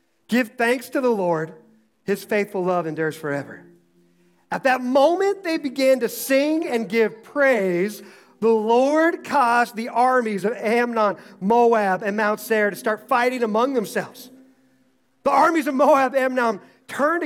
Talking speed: 145 wpm